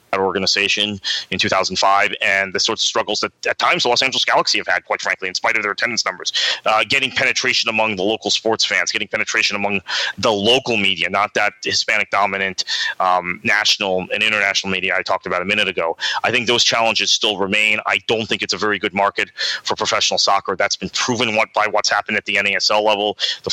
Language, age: English, 30-49